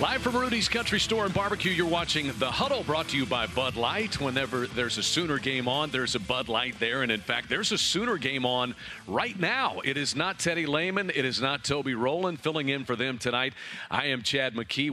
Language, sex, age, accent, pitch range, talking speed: English, male, 40-59, American, 120-150 Hz, 230 wpm